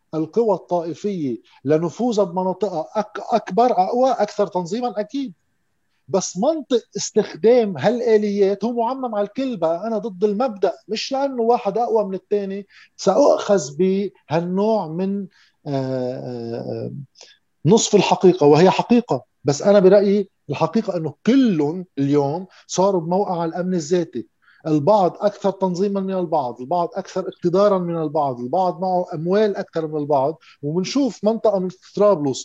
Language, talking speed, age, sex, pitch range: Arabic, 120 wpm, 50-69, male, 160-215 Hz